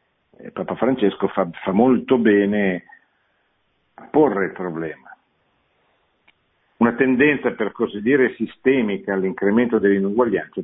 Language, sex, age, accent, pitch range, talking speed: Italian, male, 50-69, native, 100-130 Hz, 100 wpm